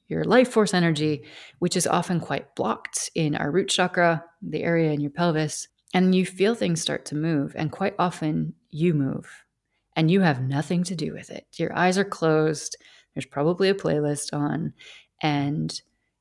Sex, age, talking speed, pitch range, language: female, 30-49, 180 wpm, 150-185 Hz, English